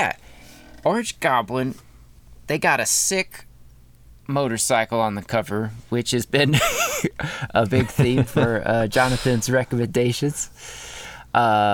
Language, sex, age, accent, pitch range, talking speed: English, male, 20-39, American, 100-130 Hz, 110 wpm